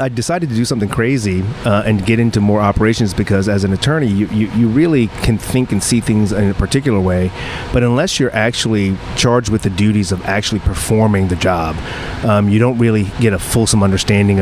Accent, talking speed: American, 210 wpm